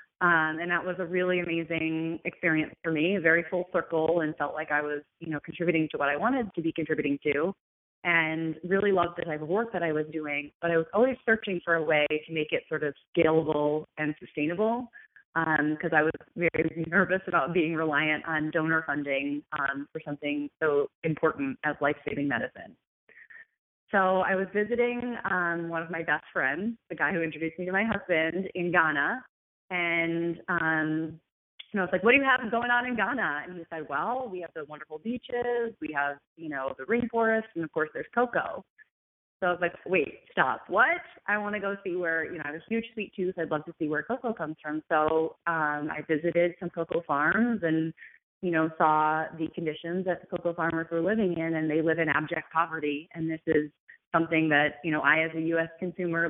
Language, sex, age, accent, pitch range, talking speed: English, female, 30-49, American, 155-185 Hz, 210 wpm